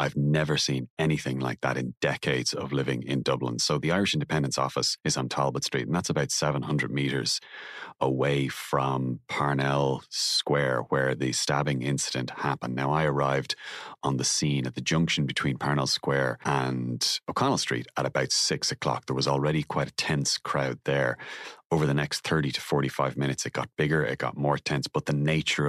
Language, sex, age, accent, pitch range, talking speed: English, male, 30-49, Irish, 65-75 Hz, 185 wpm